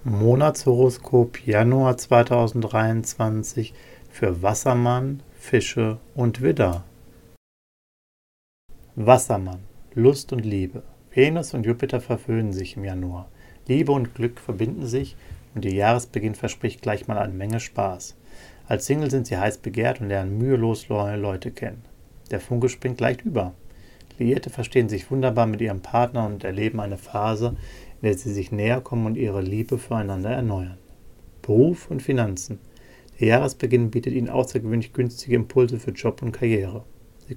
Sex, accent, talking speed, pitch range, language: male, German, 140 wpm, 105-125 Hz, German